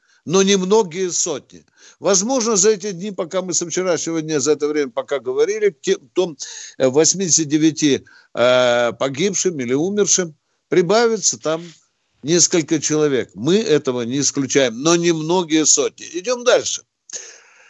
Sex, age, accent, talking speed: male, 60-79, native, 125 wpm